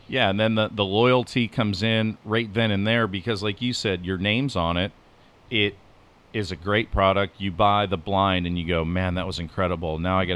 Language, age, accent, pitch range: English, 40-59, American, 90-115 Hz